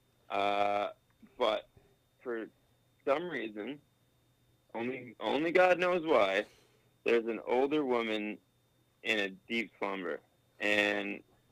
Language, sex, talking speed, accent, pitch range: English, male, 100 wpm, American, 105-125 Hz